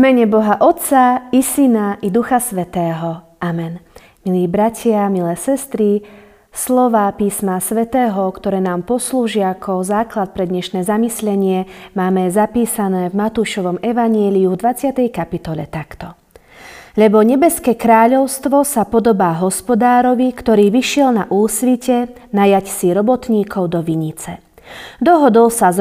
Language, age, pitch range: Slovak, 30-49, 195-255 Hz